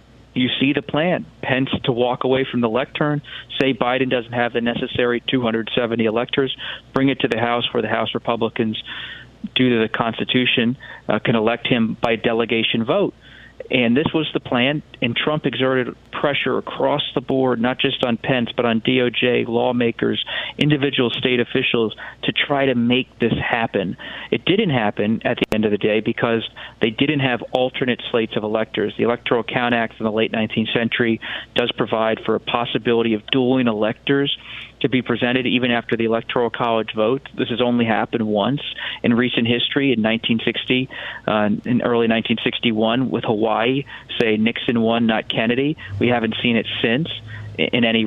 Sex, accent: male, American